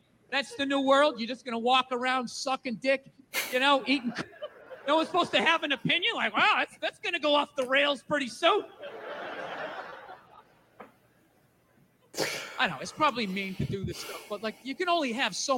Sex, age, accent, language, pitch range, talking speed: male, 40-59, American, English, 230-345 Hz, 190 wpm